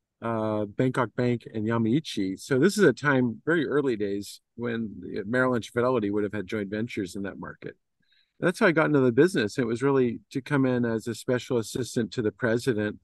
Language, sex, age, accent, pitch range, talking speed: English, male, 40-59, American, 110-125 Hz, 200 wpm